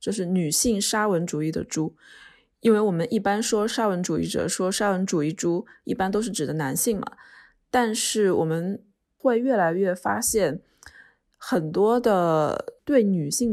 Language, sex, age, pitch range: Chinese, female, 20-39, 165-210 Hz